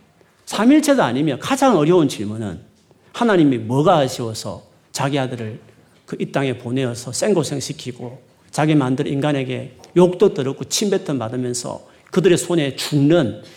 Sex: male